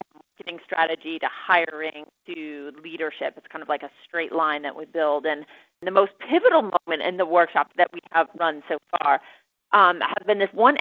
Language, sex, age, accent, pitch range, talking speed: English, female, 30-49, American, 160-200 Hz, 195 wpm